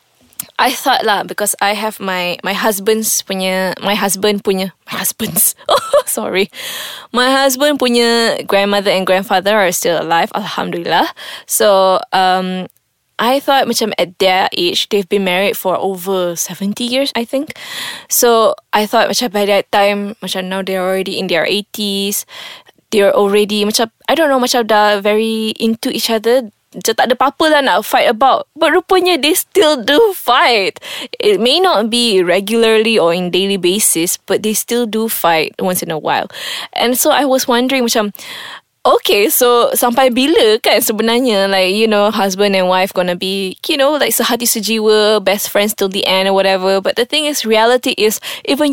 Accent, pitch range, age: Malaysian, 195-260 Hz, 20-39